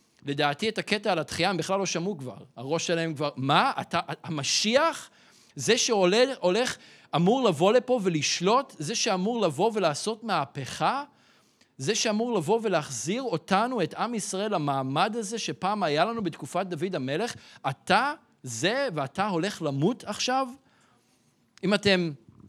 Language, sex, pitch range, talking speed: Hebrew, male, 150-205 Hz, 135 wpm